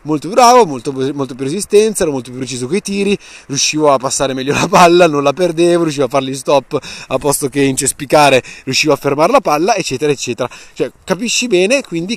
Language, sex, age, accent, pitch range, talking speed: Italian, male, 30-49, native, 135-190 Hz, 205 wpm